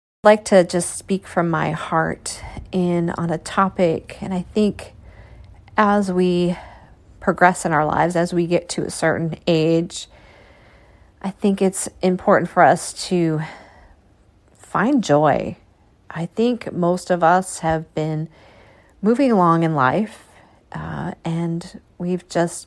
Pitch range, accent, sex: 150-185 Hz, American, female